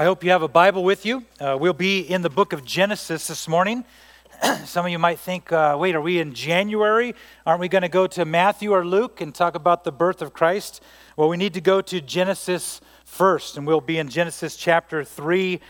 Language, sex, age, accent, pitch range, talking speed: English, male, 40-59, American, 170-205 Hz, 230 wpm